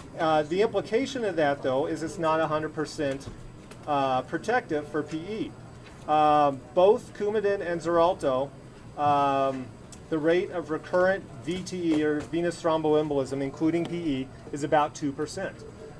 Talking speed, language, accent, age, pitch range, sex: 130 wpm, English, American, 30-49, 140-165 Hz, male